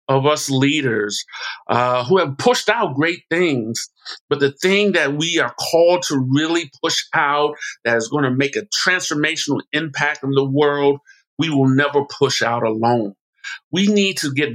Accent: American